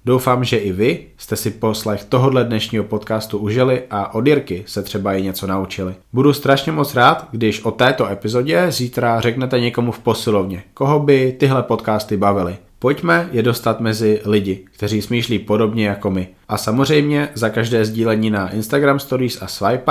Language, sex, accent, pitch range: Czech, male, native, 100-120 Hz